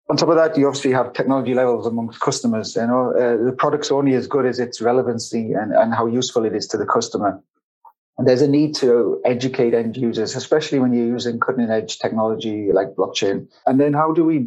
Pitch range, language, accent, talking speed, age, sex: 115-135 Hz, English, British, 215 wpm, 30-49, male